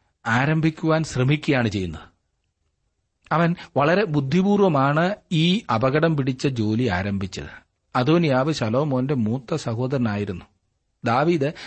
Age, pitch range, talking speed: 40-59, 105-140 Hz, 75 wpm